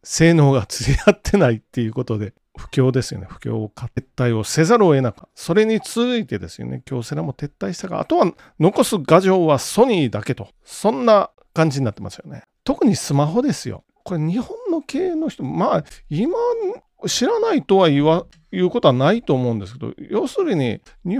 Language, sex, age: Japanese, male, 40-59